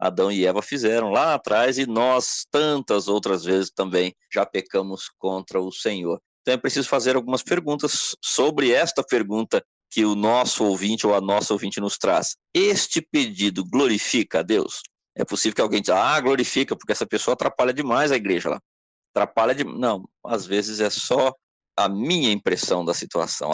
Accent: Brazilian